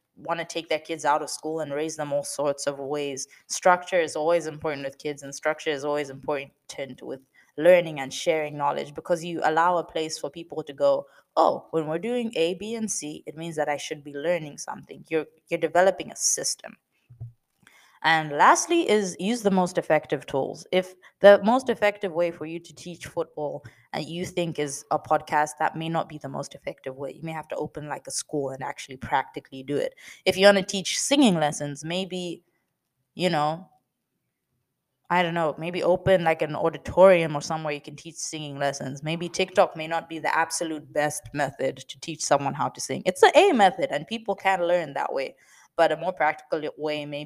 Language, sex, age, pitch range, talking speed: English, female, 20-39, 145-185 Hz, 205 wpm